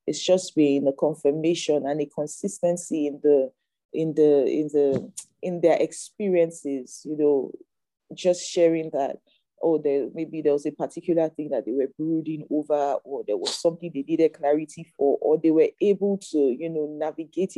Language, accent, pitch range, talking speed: English, Nigerian, 140-165 Hz, 175 wpm